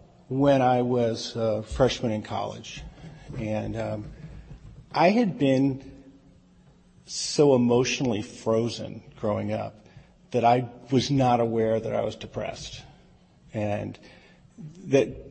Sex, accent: male, American